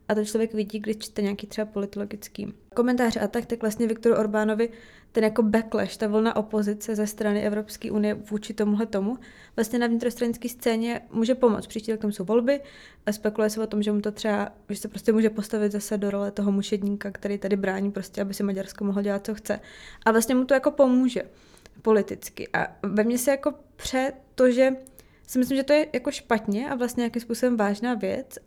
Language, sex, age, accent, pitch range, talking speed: Czech, female, 20-39, native, 215-260 Hz, 205 wpm